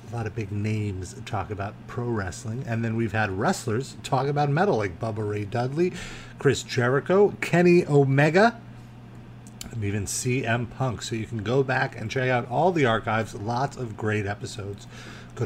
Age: 30-49